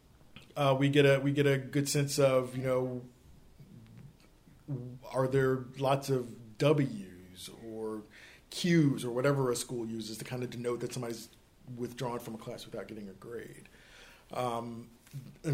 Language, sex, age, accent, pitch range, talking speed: English, male, 40-59, American, 120-145 Hz, 155 wpm